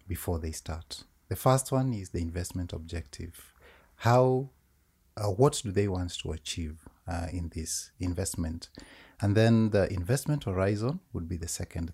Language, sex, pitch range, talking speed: English, male, 85-120 Hz, 155 wpm